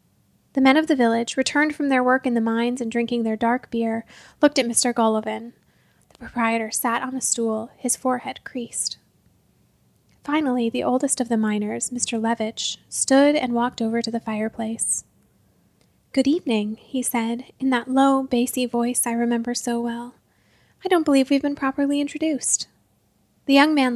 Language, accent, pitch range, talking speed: English, American, 230-280 Hz, 170 wpm